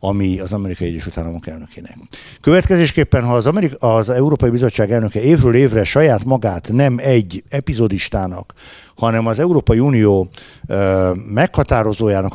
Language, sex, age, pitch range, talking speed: Hungarian, male, 60-79, 105-140 Hz, 120 wpm